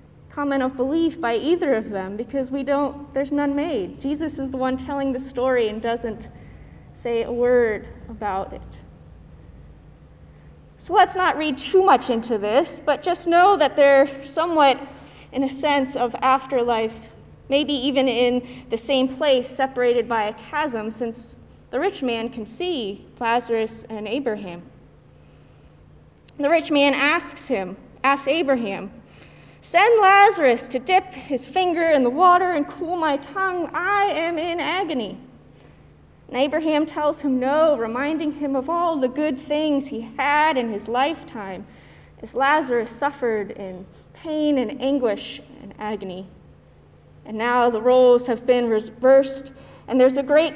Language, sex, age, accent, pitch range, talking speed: English, female, 20-39, American, 235-300 Hz, 150 wpm